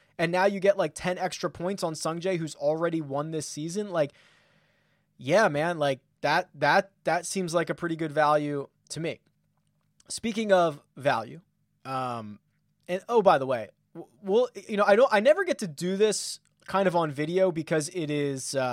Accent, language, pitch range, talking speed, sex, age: American, English, 150-190 Hz, 185 wpm, male, 20-39